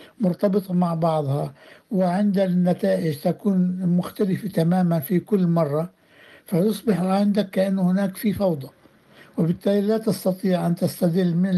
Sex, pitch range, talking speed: male, 165-195 Hz, 120 wpm